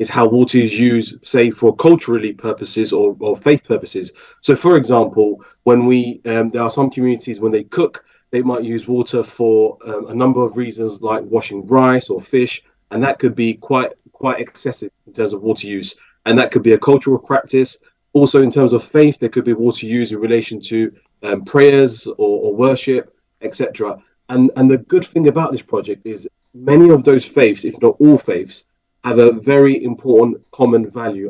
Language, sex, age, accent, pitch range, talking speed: English, male, 30-49, British, 110-135 Hz, 195 wpm